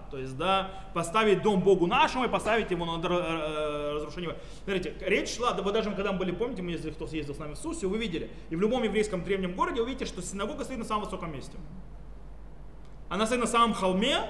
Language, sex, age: Russian, male, 30-49